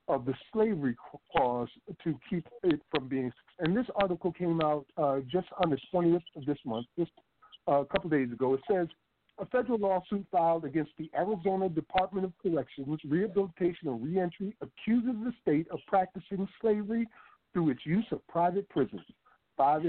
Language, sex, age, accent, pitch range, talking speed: English, male, 60-79, American, 150-195 Hz, 170 wpm